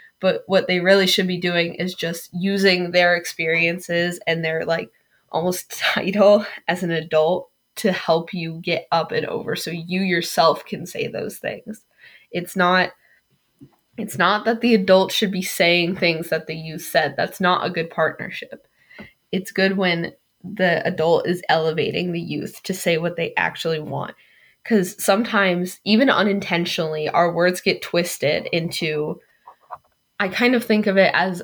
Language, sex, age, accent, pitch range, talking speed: English, female, 10-29, American, 170-195 Hz, 160 wpm